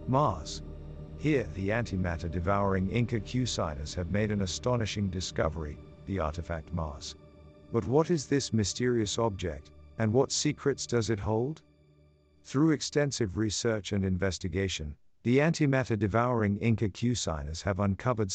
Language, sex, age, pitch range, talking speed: English, male, 50-69, 85-120 Hz, 135 wpm